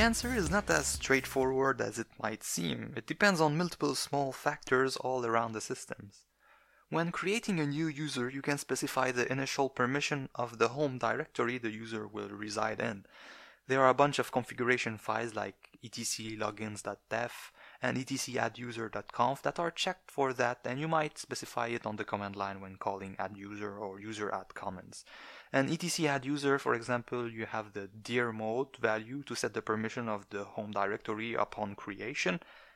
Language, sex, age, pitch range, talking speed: English, male, 20-39, 110-145 Hz, 165 wpm